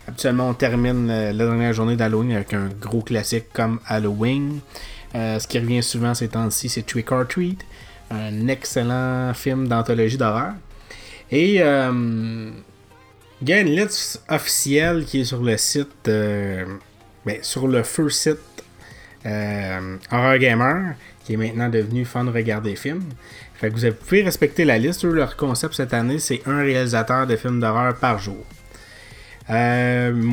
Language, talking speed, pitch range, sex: French, 160 wpm, 110-130 Hz, male